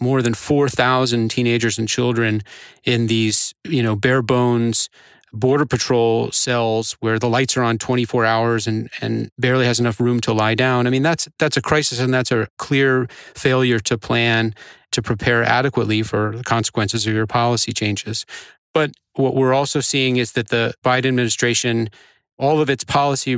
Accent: American